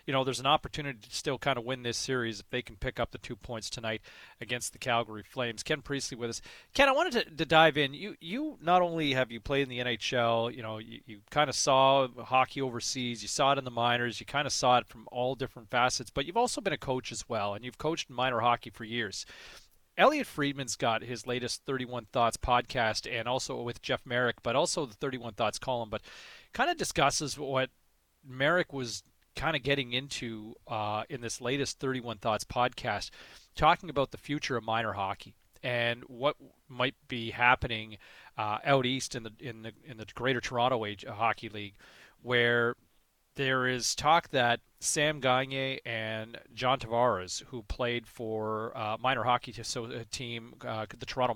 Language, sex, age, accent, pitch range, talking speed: English, male, 30-49, American, 115-135 Hz, 195 wpm